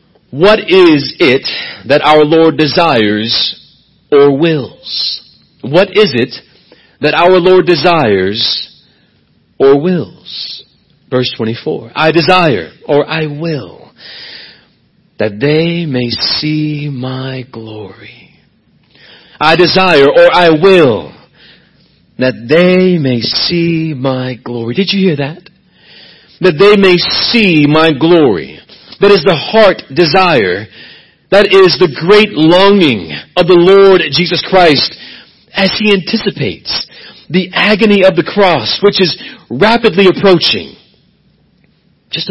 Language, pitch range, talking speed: English, 145-190 Hz, 115 wpm